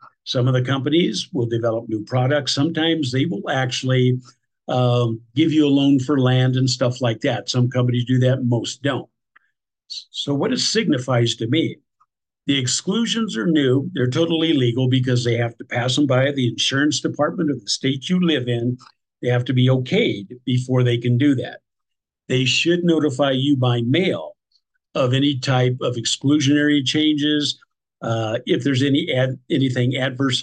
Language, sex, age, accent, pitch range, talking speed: English, male, 50-69, American, 125-145 Hz, 170 wpm